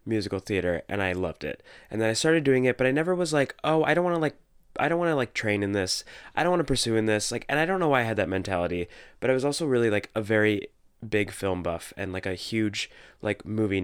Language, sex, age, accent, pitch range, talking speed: English, male, 20-39, American, 100-125 Hz, 280 wpm